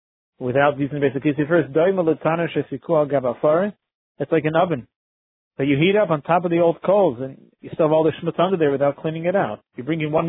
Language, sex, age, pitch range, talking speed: English, male, 40-59, 145-175 Hz, 210 wpm